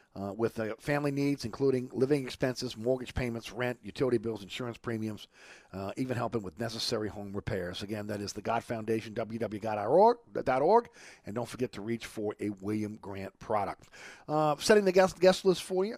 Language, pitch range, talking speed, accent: English, 110-135 Hz, 175 wpm, American